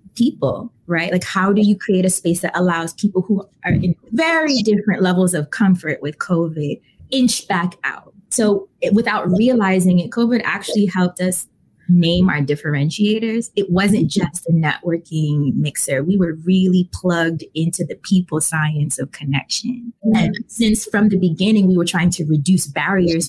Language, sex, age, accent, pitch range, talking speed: English, female, 20-39, American, 170-210 Hz, 160 wpm